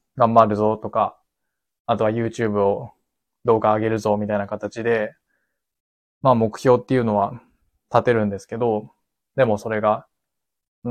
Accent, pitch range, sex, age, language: native, 105-120 Hz, male, 20-39, Japanese